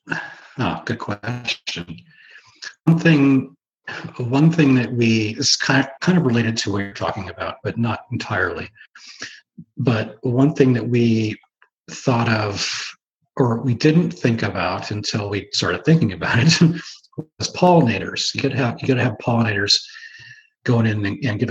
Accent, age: American, 40-59